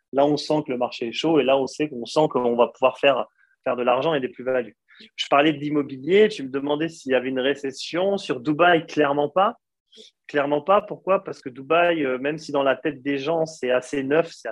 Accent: French